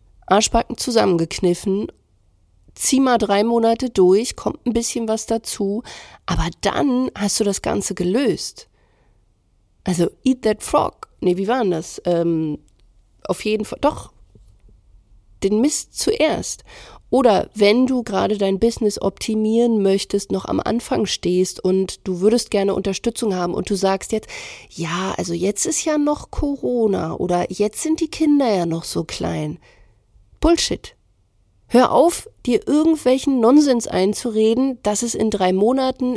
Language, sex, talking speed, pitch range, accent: German, female, 140 wpm, 185-245 Hz, German